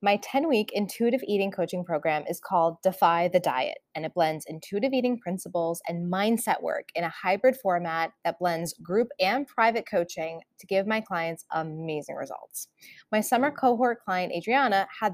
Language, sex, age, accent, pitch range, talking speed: English, female, 20-39, American, 175-235 Hz, 165 wpm